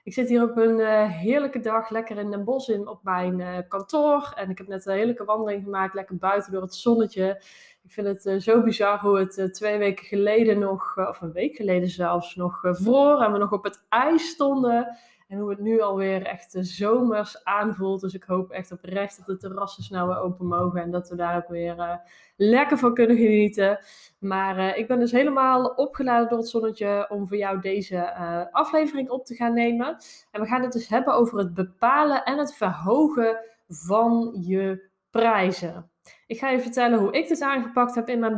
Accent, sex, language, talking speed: Dutch, female, Dutch, 215 wpm